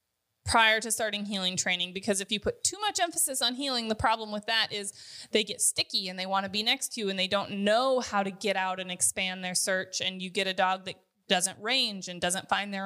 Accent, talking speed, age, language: American, 250 wpm, 20-39, English